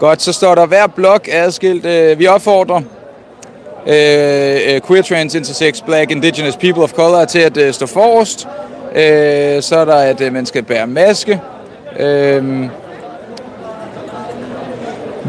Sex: male